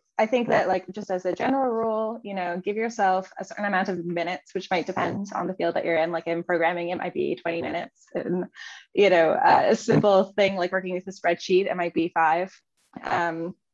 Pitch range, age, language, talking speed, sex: 175-215 Hz, 10-29, English, 225 wpm, female